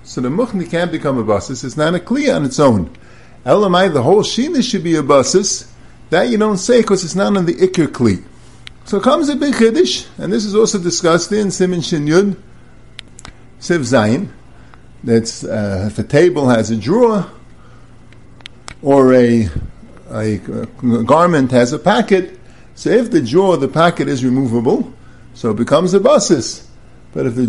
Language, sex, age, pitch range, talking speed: English, male, 50-69, 130-200 Hz, 175 wpm